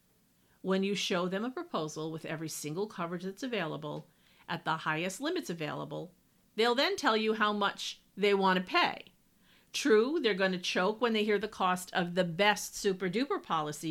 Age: 50-69